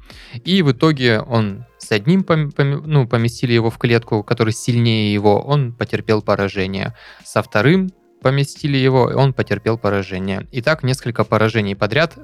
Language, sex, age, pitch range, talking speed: Russian, male, 20-39, 100-125 Hz, 155 wpm